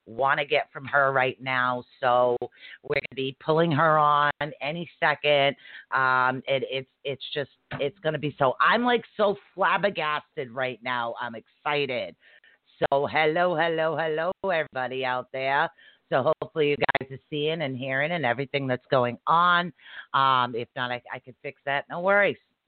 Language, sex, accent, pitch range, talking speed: English, female, American, 130-165 Hz, 165 wpm